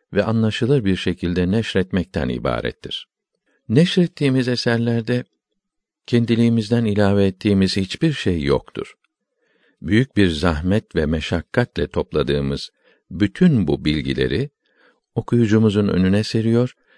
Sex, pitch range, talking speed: male, 90-120 Hz, 90 wpm